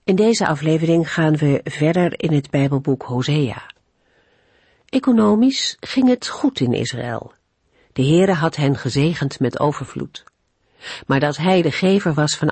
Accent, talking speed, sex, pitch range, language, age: Dutch, 145 wpm, female, 135-185 Hz, Dutch, 50-69